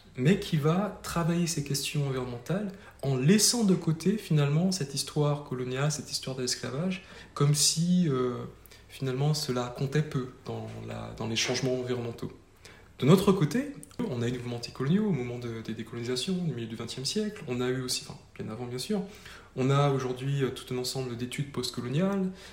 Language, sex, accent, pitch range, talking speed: French, male, French, 120-160 Hz, 185 wpm